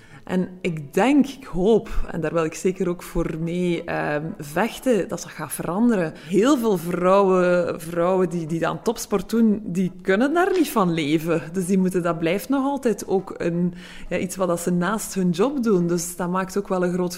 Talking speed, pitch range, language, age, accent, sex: 190 wpm, 170-220 Hz, Dutch, 20-39, Dutch, female